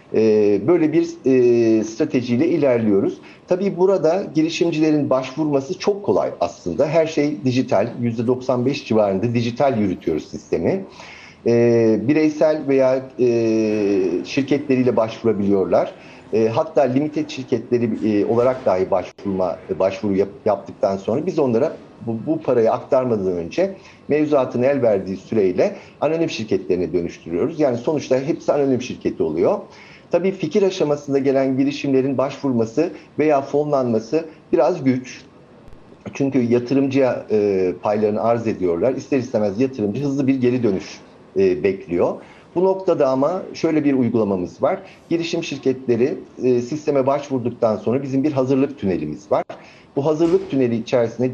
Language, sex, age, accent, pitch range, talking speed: Turkish, male, 60-79, native, 115-150 Hz, 115 wpm